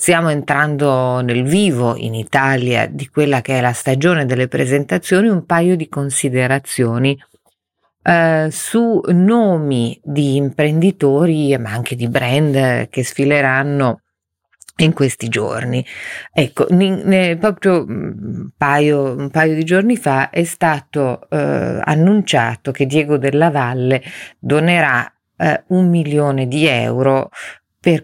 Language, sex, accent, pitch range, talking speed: Italian, female, native, 135-165 Hz, 115 wpm